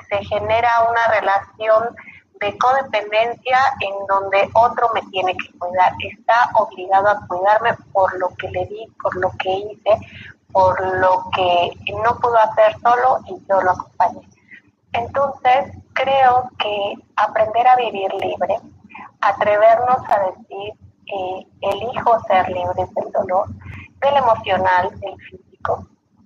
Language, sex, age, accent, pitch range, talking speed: Spanish, female, 30-49, Mexican, 195-235 Hz, 130 wpm